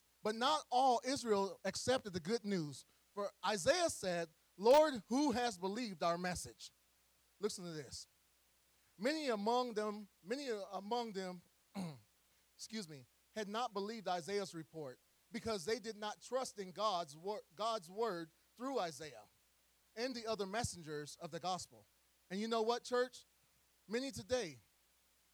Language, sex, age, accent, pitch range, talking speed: English, male, 30-49, American, 150-225 Hz, 135 wpm